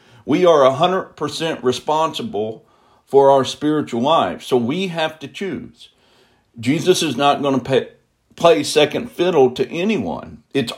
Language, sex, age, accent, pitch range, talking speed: English, male, 60-79, American, 125-165 Hz, 145 wpm